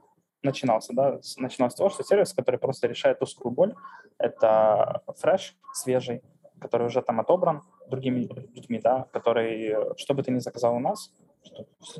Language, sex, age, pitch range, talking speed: Russian, male, 20-39, 120-185 Hz, 155 wpm